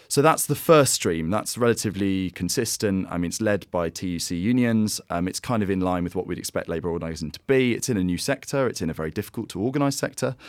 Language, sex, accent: English, male, British